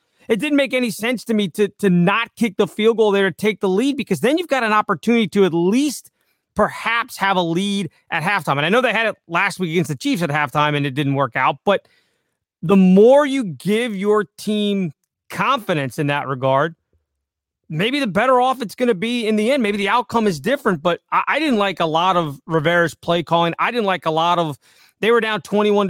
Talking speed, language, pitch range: 230 wpm, English, 175-235 Hz